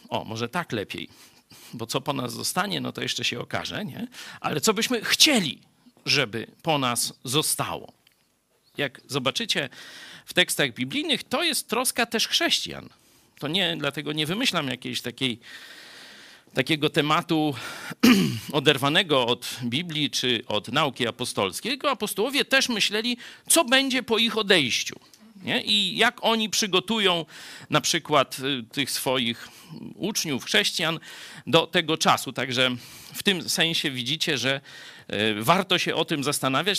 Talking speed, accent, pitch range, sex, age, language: 130 wpm, native, 125-205 Hz, male, 50-69, Polish